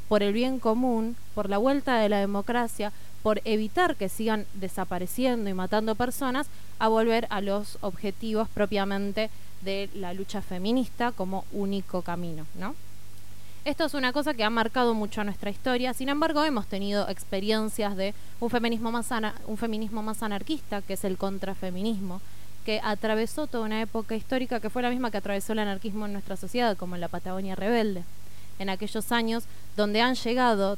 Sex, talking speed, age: female, 165 wpm, 20-39